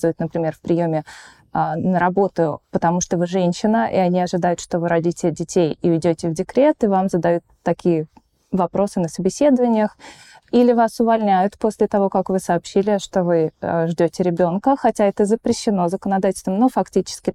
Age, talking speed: 20-39, 155 wpm